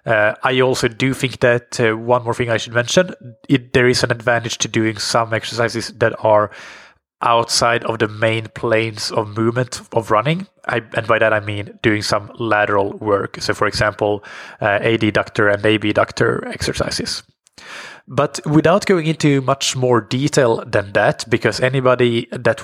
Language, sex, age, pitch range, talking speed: English, male, 20-39, 110-125 Hz, 170 wpm